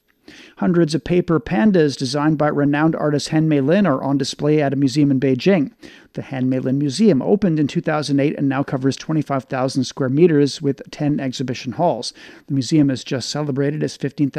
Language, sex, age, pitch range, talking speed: English, male, 40-59, 140-165 Hz, 185 wpm